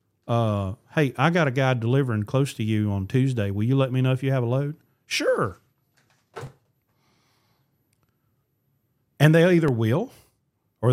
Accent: American